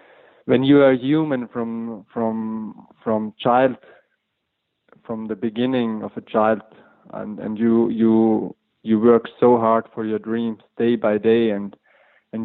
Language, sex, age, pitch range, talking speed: English, male, 20-39, 105-120 Hz, 145 wpm